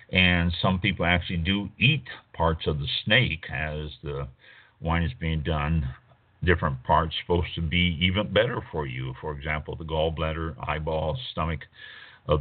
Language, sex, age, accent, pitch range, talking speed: English, male, 60-79, American, 80-100 Hz, 155 wpm